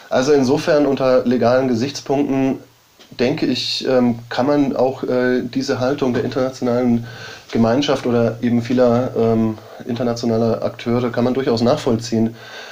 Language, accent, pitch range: German, German, 115-130 Hz